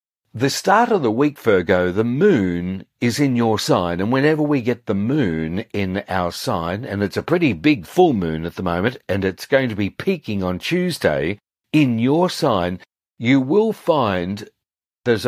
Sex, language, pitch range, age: male, English, 90-135 Hz, 50-69